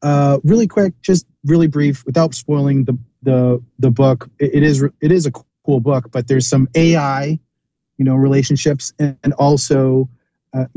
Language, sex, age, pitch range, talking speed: English, male, 30-49, 120-140 Hz, 175 wpm